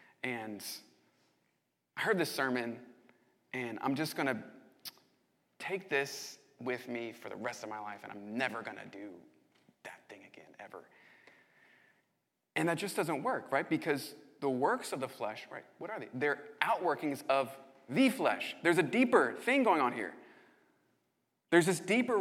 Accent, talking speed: American, 160 wpm